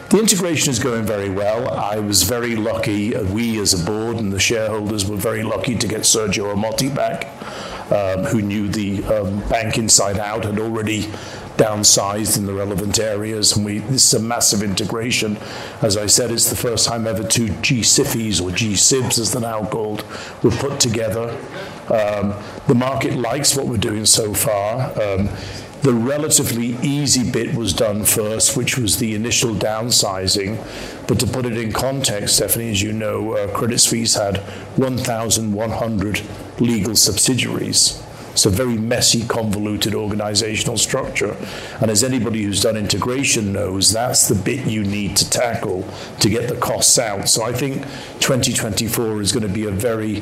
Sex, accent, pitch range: male, British, 105-120 Hz